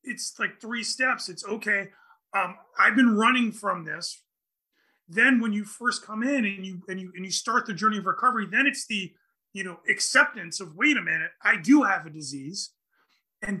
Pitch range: 190-255 Hz